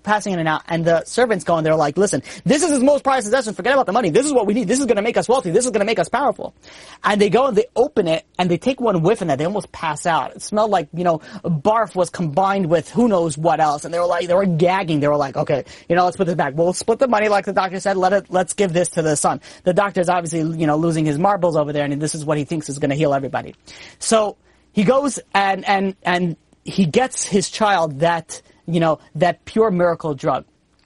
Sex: male